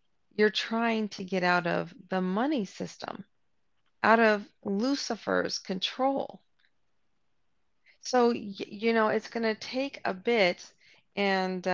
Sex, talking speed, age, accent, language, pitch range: female, 120 wpm, 40-59, American, English, 195-240 Hz